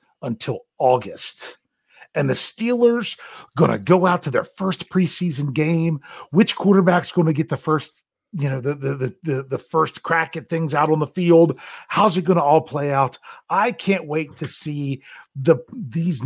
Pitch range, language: 135-175 Hz, English